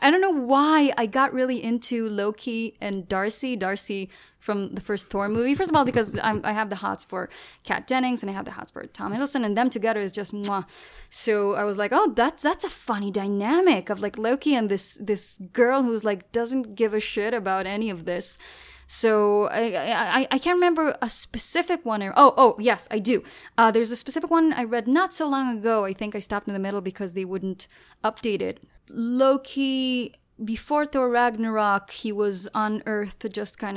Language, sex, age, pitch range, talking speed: English, female, 10-29, 200-255 Hz, 210 wpm